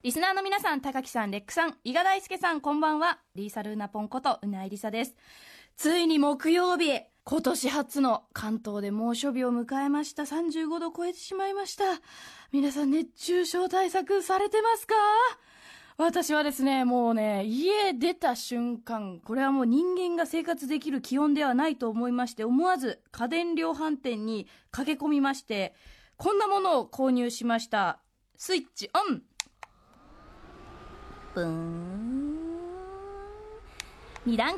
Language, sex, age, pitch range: Japanese, female, 20-39, 215-335 Hz